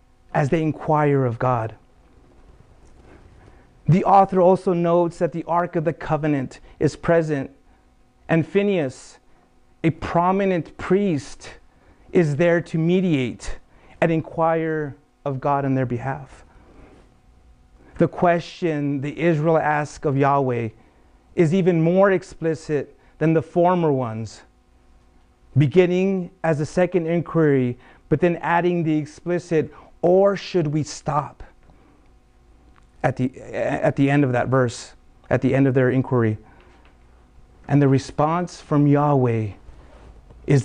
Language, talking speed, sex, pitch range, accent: English, 120 wpm, male, 110-165 Hz, American